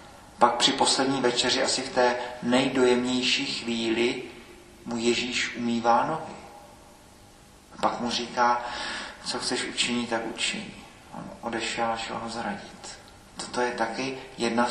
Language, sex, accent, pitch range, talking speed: Czech, male, native, 115-125 Hz, 120 wpm